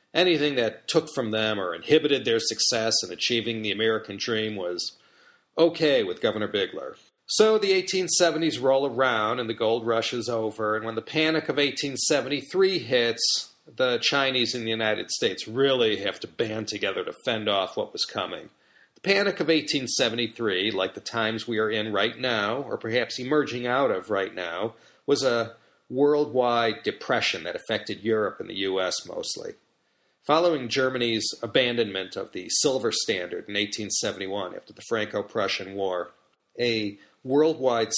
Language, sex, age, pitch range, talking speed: English, male, 40-59, 110-150 Hz, 155 wpm